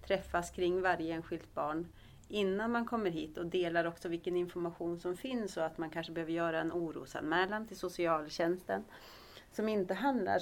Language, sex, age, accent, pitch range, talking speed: Swedish, female, 30-49, native, 165-200 Hz, 165 wpm